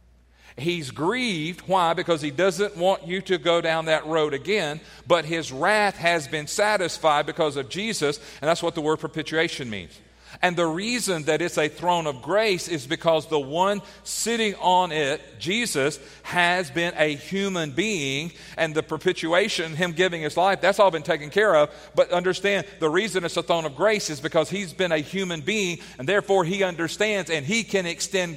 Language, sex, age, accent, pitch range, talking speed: English, male, 40-59, American, 150-195 Hz, 190 wpm